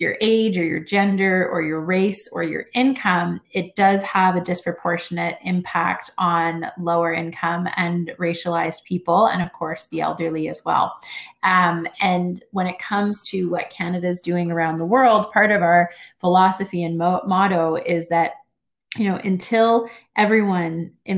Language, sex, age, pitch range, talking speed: English, female, 30-49, 170-190 Hz, 160 wpm